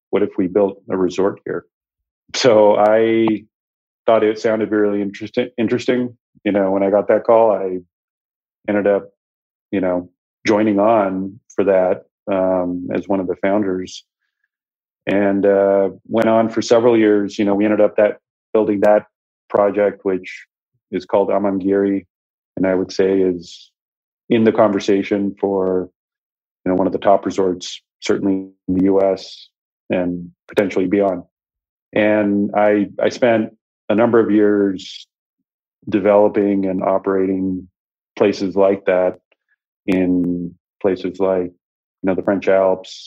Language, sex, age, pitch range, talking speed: English, male, 40-59, 95-105 Hz, 140 wpm